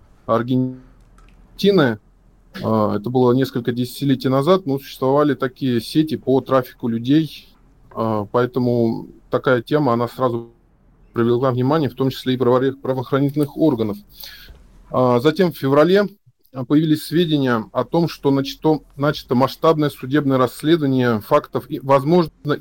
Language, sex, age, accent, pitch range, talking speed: Russian, male, 20-39, native, 120-145 Hz, 105 wpm